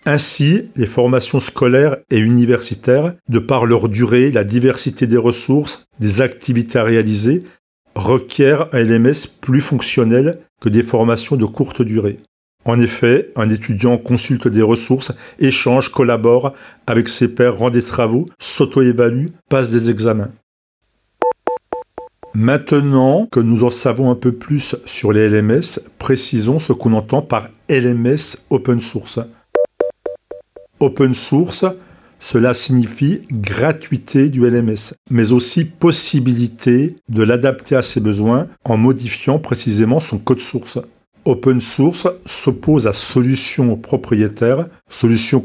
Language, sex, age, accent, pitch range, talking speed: French, male, 40-59, French, 115-140 Hz, 125 wpm